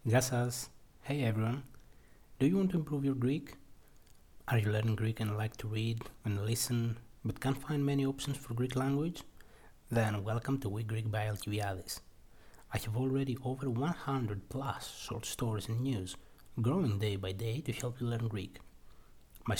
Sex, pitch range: male, 105-135 Hz